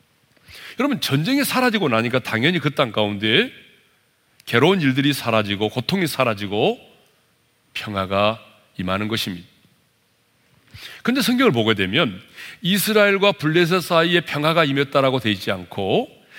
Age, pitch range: 40-59, 110-185 Hz